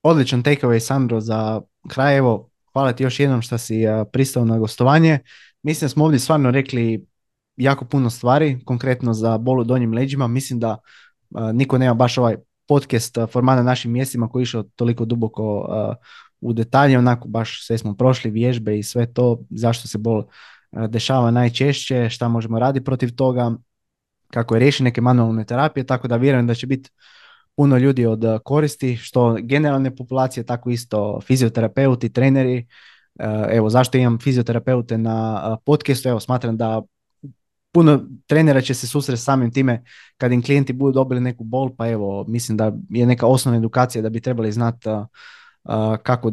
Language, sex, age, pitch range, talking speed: Croatian, male, 20-39, 115-135 Hz, 165 wpm